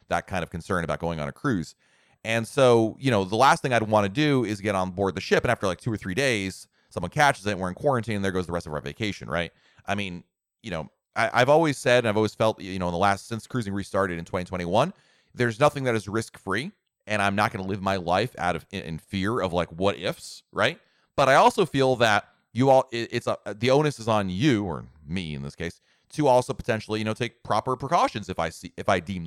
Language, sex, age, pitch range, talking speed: English, male, 30-49, 90-125 Hz, 255 wpm